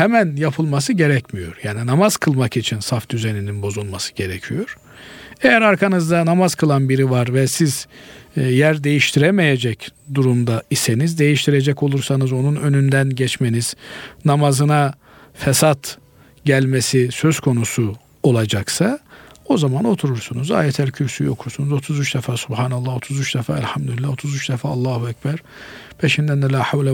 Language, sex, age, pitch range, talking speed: Turkish, male, 50-69, 130-155 Hz, 120 wpm